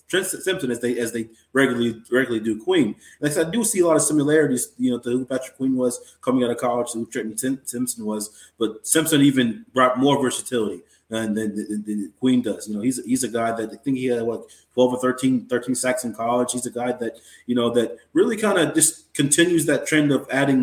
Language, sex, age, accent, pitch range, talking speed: English, male, 30-49, American, 115-130 Hz, 235 wpm